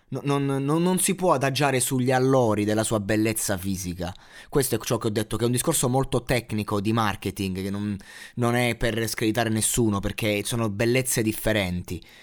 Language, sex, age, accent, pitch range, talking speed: Italian, male, 20-39, native, 120-170 Hz, 185 wpm